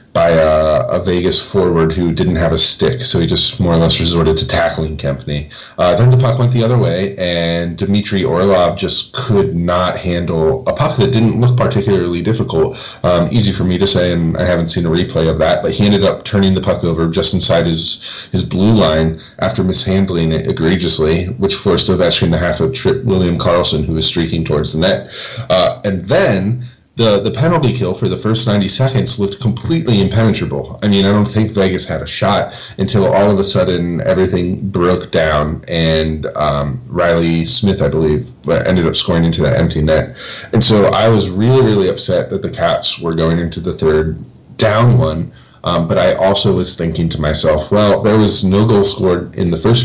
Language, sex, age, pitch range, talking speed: English, male, 30-49, 85-100 Hz, 200 wpm